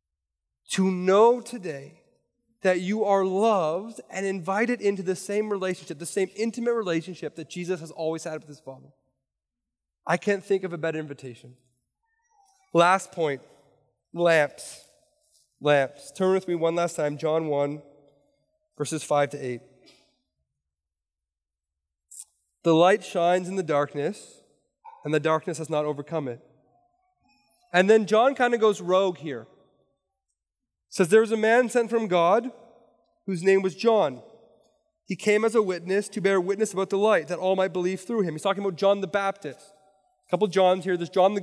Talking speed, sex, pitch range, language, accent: 165 wpm, male, 160-215 Hz, English, American